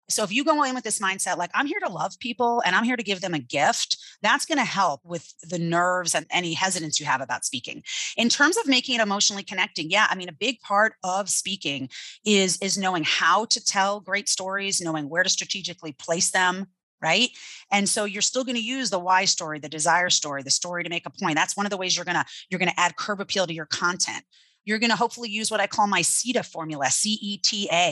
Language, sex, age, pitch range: English, female, 30-49, 175-215 Hz